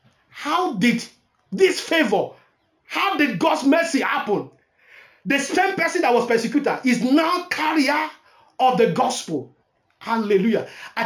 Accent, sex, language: Nigerian, male, English